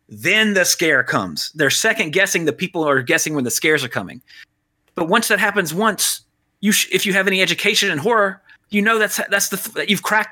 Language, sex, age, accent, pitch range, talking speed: English, male, 30-49, American, 140-195 Hz, 220 wpm